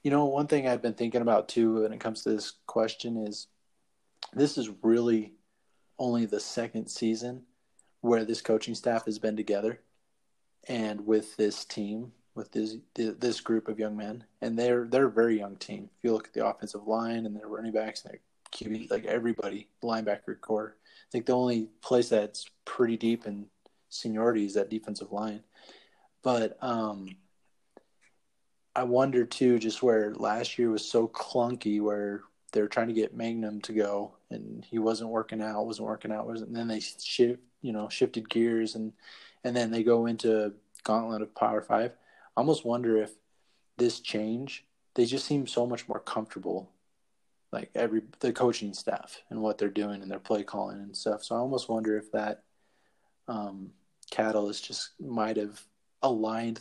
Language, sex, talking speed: English, male, 175 wpm